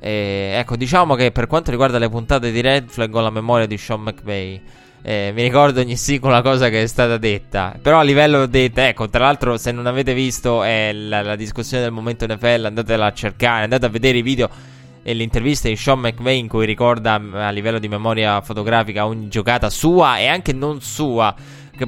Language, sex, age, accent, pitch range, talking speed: Italian, male, 20-39, native, 105-125 Hz, 210 wpm